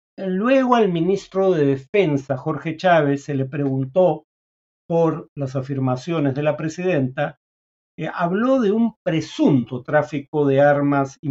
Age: 50-69